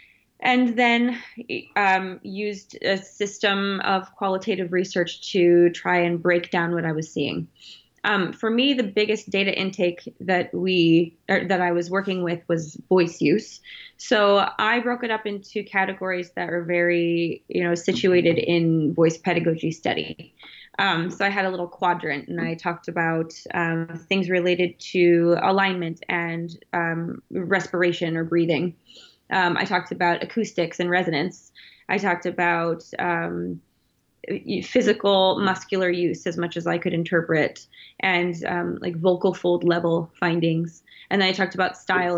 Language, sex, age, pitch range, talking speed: English, female, 20-39, 170-195 Hz, 150 wpm